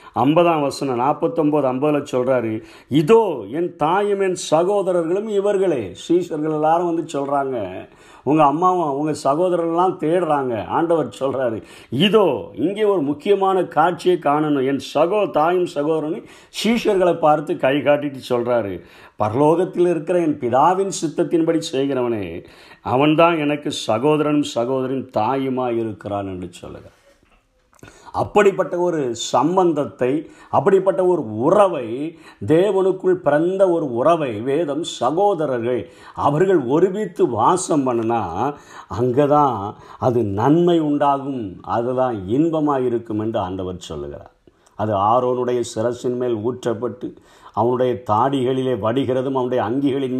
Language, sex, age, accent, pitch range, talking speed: Tamil, male, 50-69, native, 125-175 Hz, 105 wpm